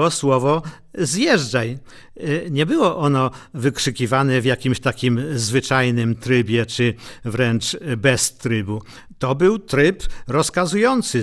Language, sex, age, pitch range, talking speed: English, male, 50-69, 130-195 Hz, 100 wpm